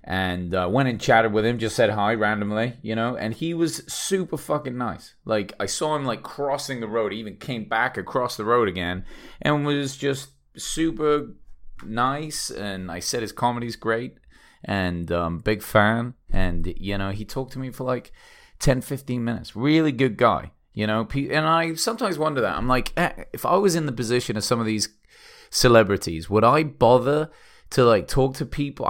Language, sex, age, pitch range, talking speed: English, male, 30-49, 105-135 Hz, 195 wpm